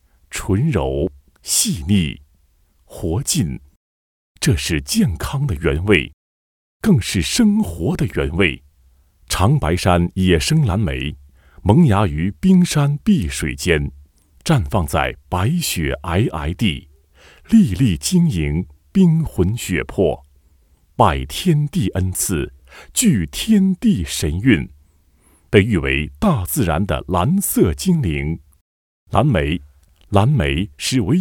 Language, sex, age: Chinese, male, 30-49